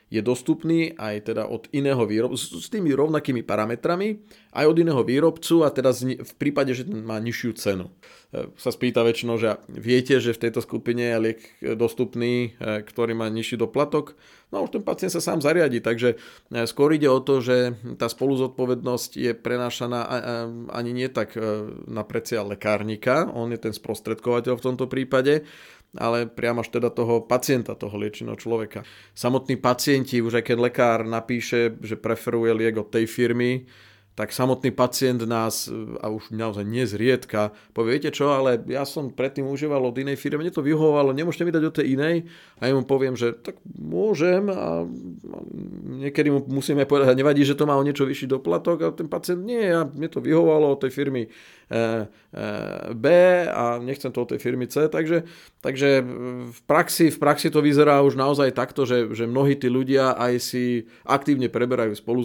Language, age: Slovak, 40-59